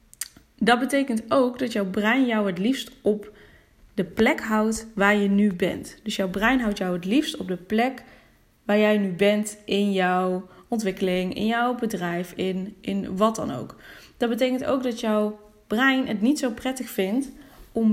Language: Dutch